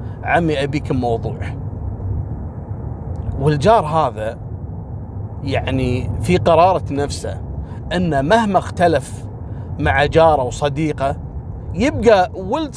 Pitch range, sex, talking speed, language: 110-150 Hz, male, 80 wpm, Arabic